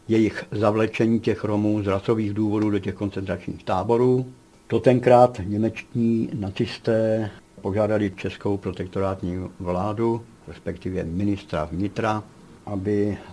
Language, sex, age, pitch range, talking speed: Czech, male, 70-89, 100-120 Hz, 105 wpm